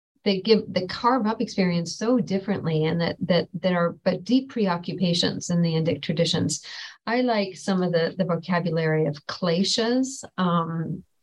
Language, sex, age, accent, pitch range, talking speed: English, female, 40-59, American, 170-195 Hz, 160 wpm